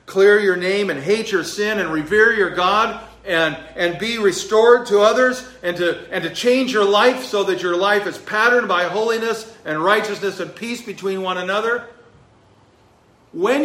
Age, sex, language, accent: 50-69, male, English, American